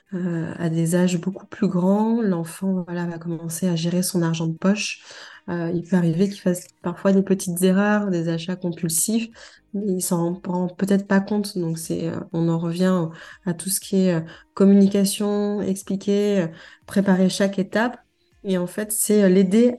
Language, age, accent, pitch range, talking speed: French, 20-39, French, 175-205 Hz, 180 wpm